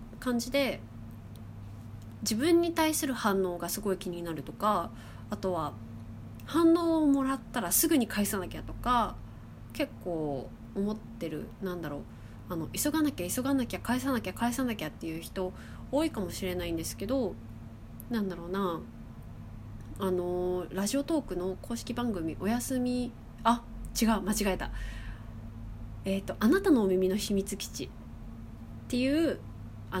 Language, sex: Japanese, female